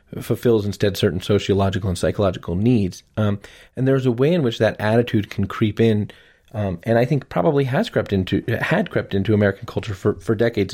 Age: 30-49